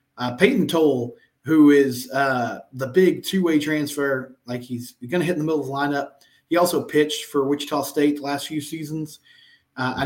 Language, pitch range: English, 130-150 Hz